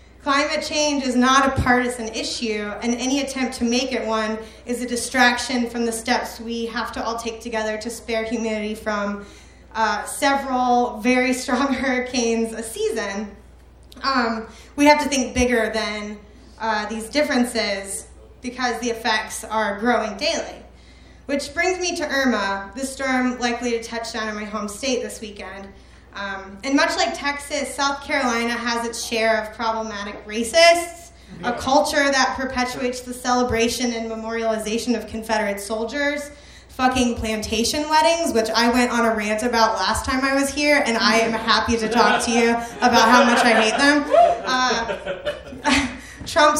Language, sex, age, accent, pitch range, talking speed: English, female, 20-39, American, 220-265 Hz, 160 wpm